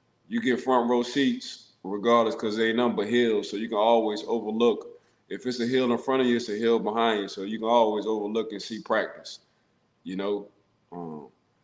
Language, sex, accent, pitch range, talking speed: English, male, American, 105-125 Hz, 210 wpm